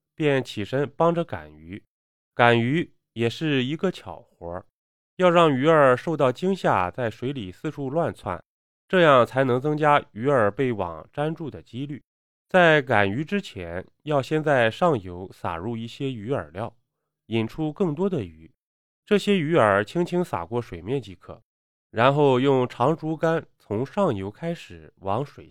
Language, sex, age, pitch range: Chinese, male, 20-39, 100-150 Hz